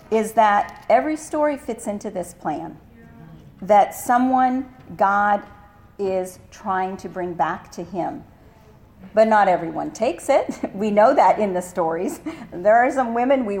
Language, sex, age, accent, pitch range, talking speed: English, female, 40-59, American, 190-265 Hz, 150 wpm